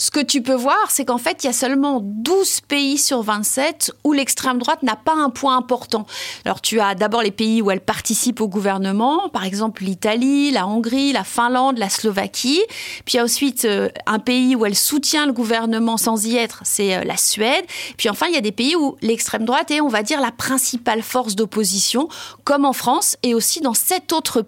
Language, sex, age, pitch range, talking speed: French, female, 30-49, 215-280 Hz, 215 wpm